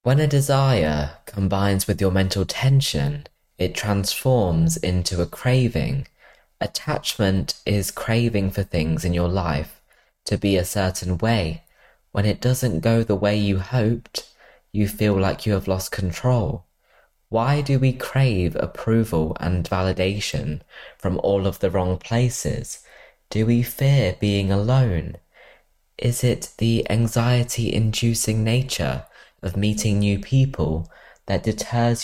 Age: 20-39